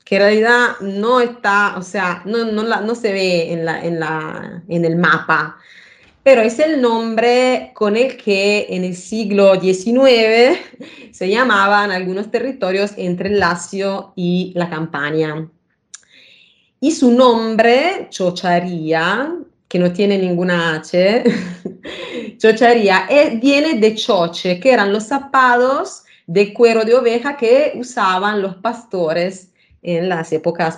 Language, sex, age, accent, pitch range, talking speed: Spanish, female, 30-49, Italian, 175-230 Hz, 125 wpm